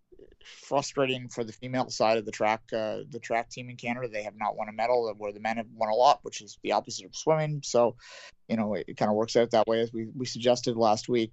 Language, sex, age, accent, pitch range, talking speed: English, male, 30-49, American, 110-125 Hz, 265 wpm